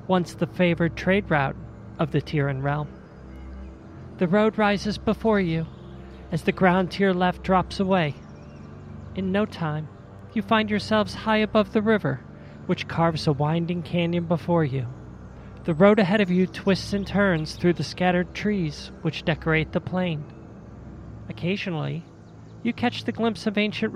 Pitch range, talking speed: 135-190 Hz, 155 wpm